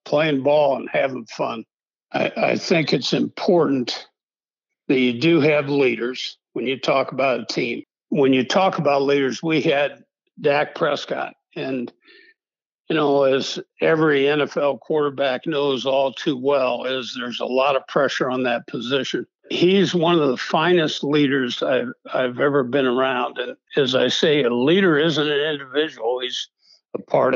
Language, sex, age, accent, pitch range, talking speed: English, male, 60-79, American, 130-155 Hz, 160 wpm